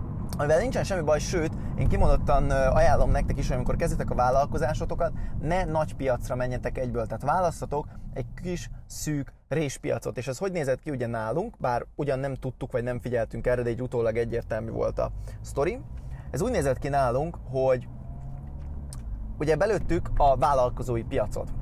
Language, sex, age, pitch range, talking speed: Hungarian, male, 20-39, 115-145 Hz, 160 wpm